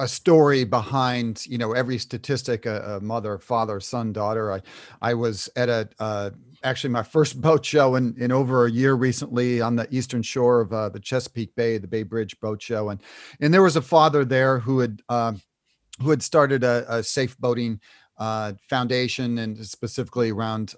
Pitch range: 110-130 Hz